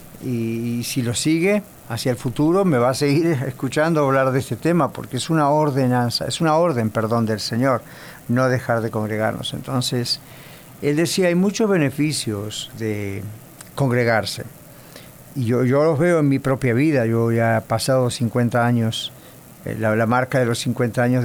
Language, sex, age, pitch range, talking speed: English, male, 50-69, 120-150 Hz, 170 wpm